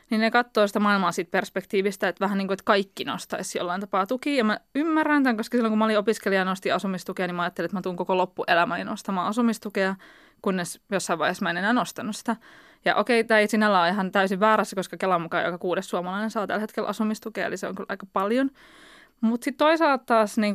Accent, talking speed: native, 230 wpm